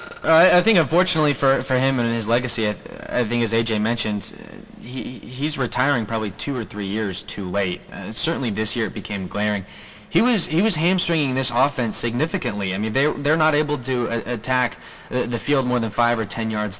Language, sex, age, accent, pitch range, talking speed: English, male, 20-39, American, 105-130 Hz, 210 wpm